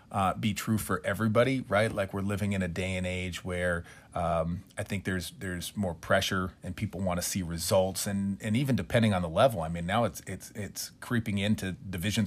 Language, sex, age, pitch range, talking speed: English, male, 30-49, 95-115 Hz, 230 wpm